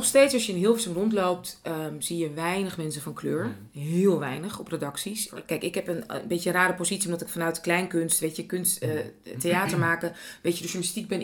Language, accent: Dutch, Dutch